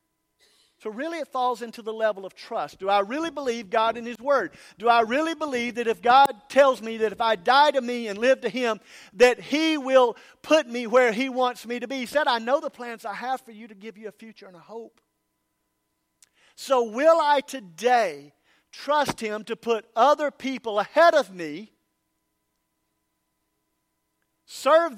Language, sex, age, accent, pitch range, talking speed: English, male, 50-69, American, 155-245 Hz, 190 wpm